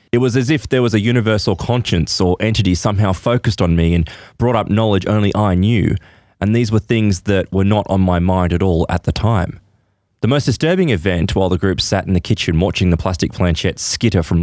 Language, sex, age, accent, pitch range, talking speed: English, male, 20-39, Australian, 90-110 Hz, 225 wpm